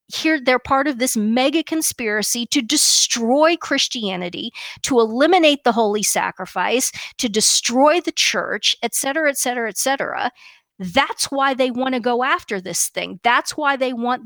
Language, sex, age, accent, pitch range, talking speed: English, female, 50-69, American, 230-295 Hz, 160 wpm